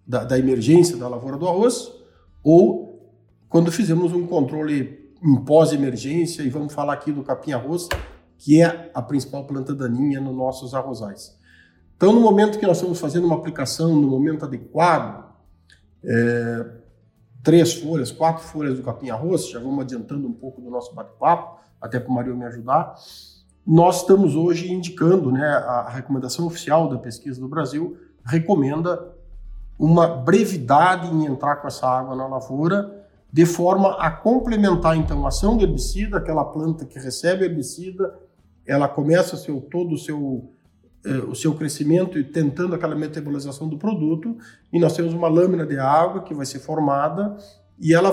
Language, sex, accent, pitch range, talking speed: Portuguese, male, Brazilian, 130-170 Hz, 155 wpm